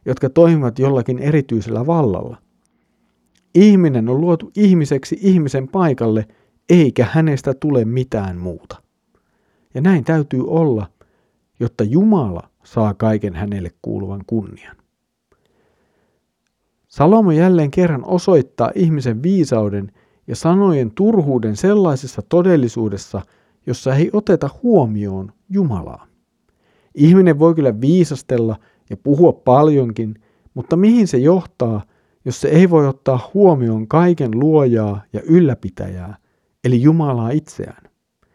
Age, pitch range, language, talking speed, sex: 50-69, 110-165 Hz, Finnish, 105 wpm, male